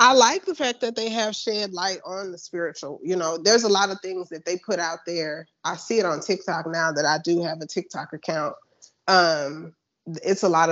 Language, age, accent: English, 20-39, American